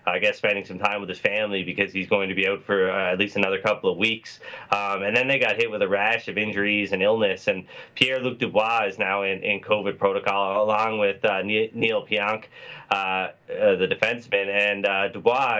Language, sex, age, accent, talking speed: English, male, 20-39, American, 215 wpm